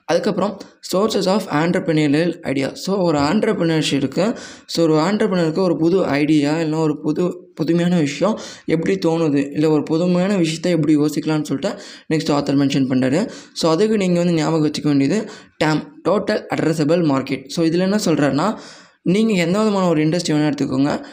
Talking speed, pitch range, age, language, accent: 150 wpm, 145-180 Hz, 20-39, Tamil, native